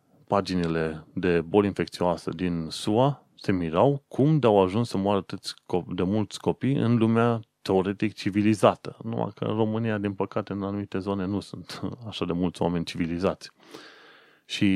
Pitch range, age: 90-115 Hz, 30-49